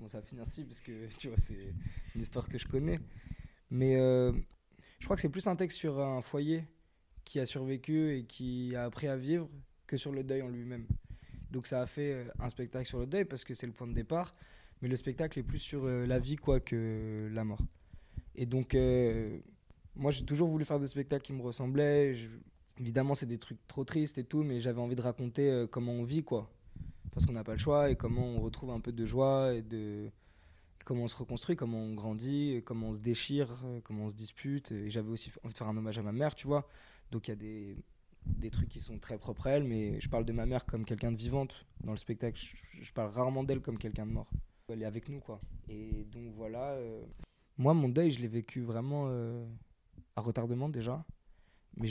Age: 20-39